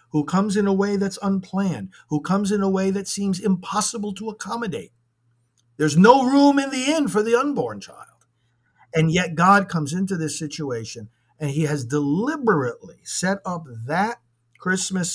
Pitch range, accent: 125-195 Hz, American